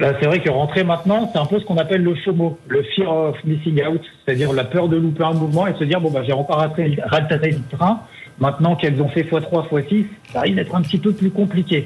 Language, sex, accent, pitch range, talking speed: French, male, French, 155-200 Hz, 270 wpm